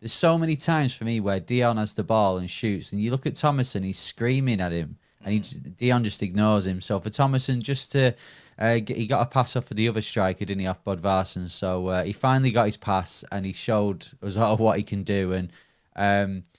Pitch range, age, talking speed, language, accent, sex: 100-125 Hz, 20-39, 250 wpm, English, British, male